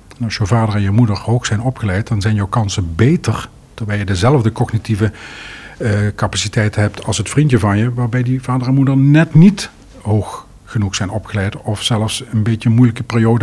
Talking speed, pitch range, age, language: 200 wpm, 105-130 Hz, 50-69, Dutch